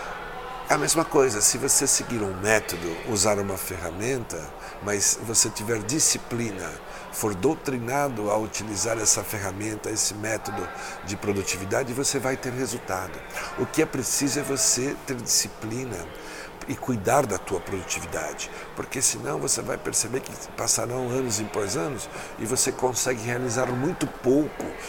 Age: 60-79